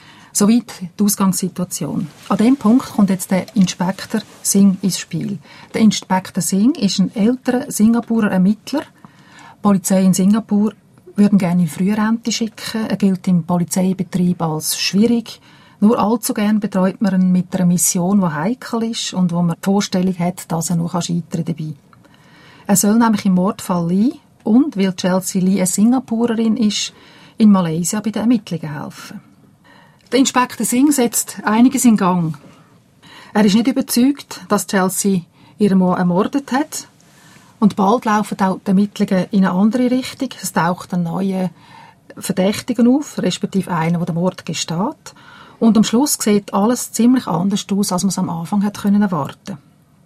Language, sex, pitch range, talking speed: German, female, 180-220 Hz, 160 wpm